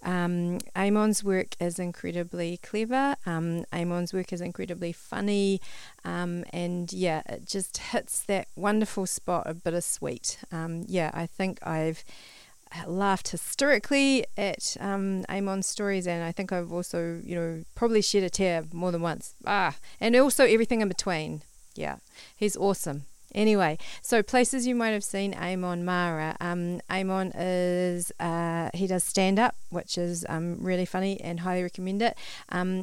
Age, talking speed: 40-59, 155 wpm